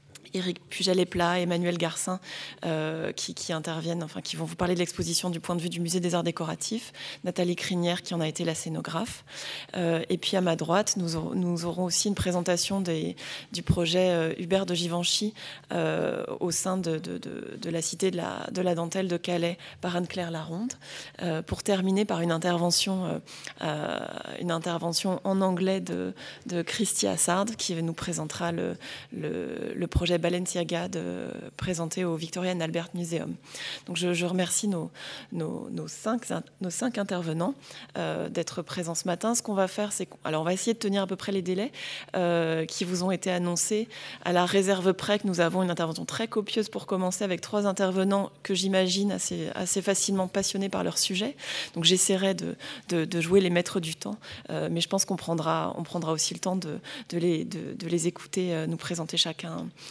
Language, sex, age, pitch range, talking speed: French, female, 20-39, 170-190 Hz, 195 wpm